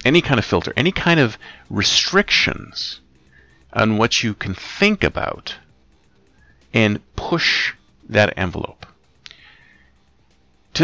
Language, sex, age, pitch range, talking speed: English, male, 40-59, 90-115 Hz, 105 wpm